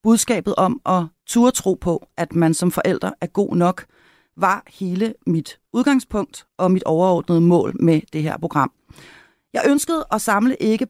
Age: 40-59